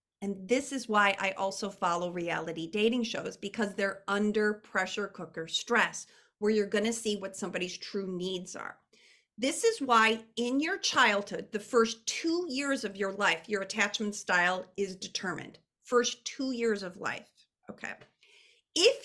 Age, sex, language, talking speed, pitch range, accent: 40-59, female, English, 160 wpm, 195-250 Hz, American